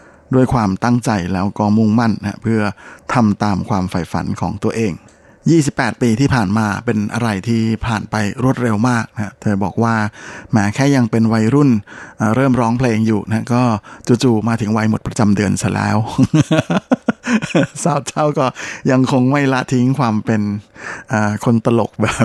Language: Thai